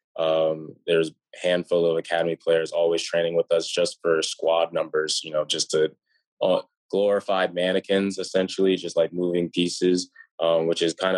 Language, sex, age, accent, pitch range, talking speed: English, male, 20-39, American, 80-95 Hz, 165 wpm